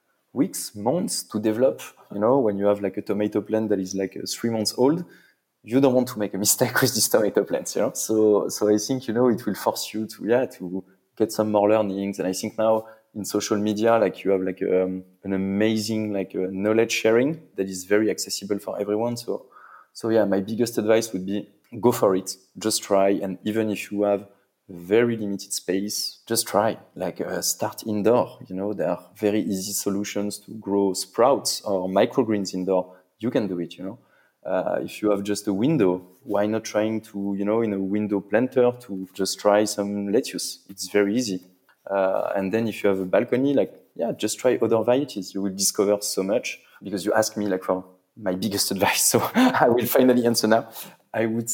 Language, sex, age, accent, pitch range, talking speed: English, male, 20-39, French, 95-110 Hz, 210 wpm